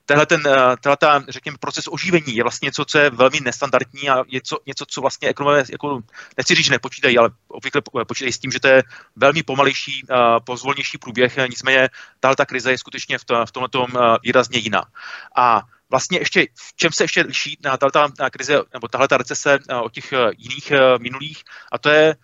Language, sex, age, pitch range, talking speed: Czech, male, 30-49, 125-145 Hz, 185 wpm